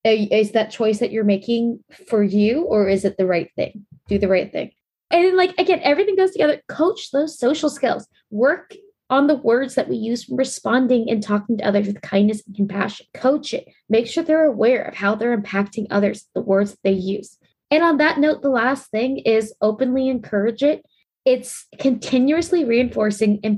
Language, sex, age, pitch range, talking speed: English, female, 20-39, 200-260 Hz, 190 wpm